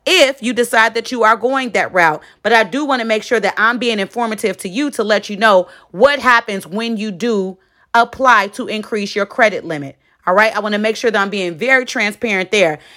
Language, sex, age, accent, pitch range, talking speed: English, female, 30-49, American, 200-255 Hz, 230 wpm